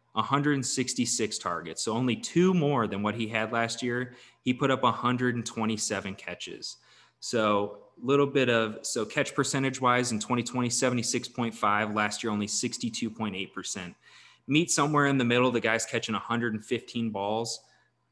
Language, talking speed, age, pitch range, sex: English, 140 wpm, 20-39, 100-120 Hz, male